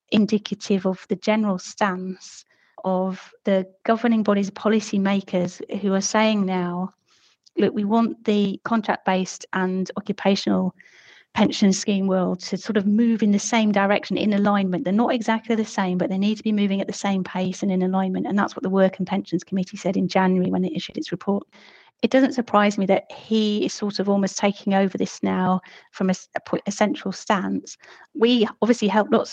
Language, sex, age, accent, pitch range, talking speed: English, female, 30-49, British, 190-210 Hz, 190 wpm